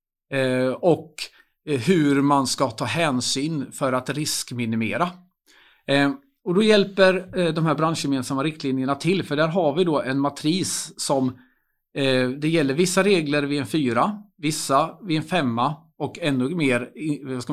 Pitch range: 135-175 Hz